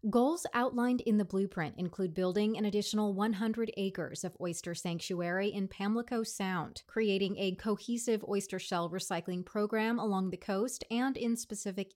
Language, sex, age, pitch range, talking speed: English, female, 30-49, 180-230 Hz, 150 wpm